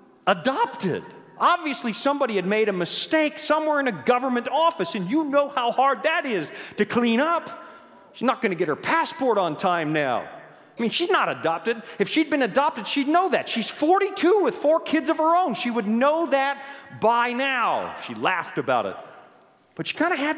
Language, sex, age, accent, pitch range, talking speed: English, male, 40-59, American, 205-315 Hz, 195 wpm